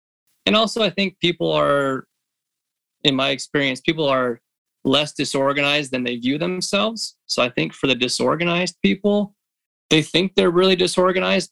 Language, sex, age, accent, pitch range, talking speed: English, male, 20-39, American, 130-170 Hz, 150 wpm